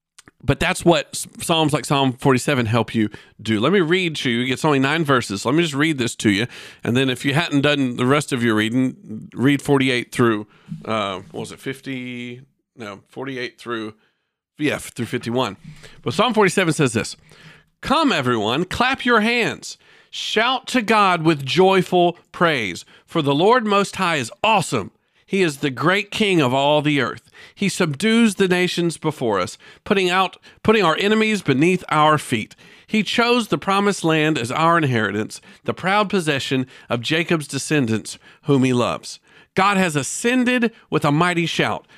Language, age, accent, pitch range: English, 50-69, American, 130-195 Hz